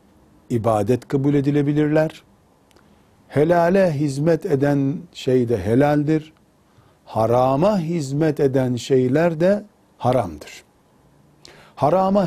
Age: 60-79